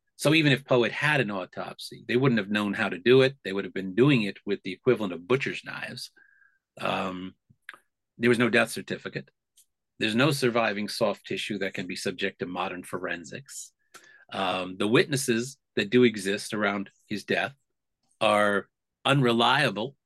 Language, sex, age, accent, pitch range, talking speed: English, male, 40-59, American, 105-140 Hz, 170 wpm